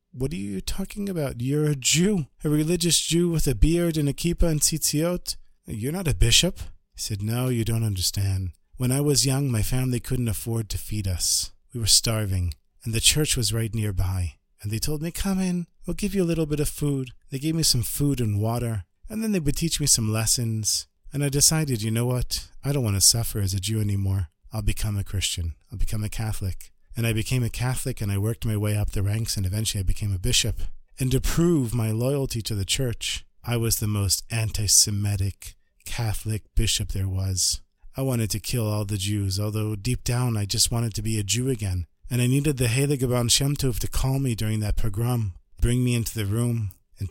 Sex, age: male, 40-59